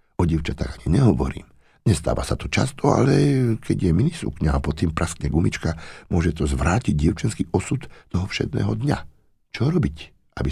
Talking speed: 165 wpm